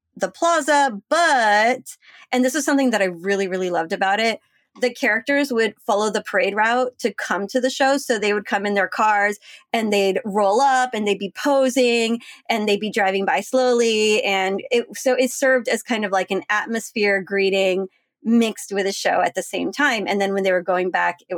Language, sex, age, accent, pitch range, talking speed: English, female, 20-39, American, 200-255 Hz, 210 wpm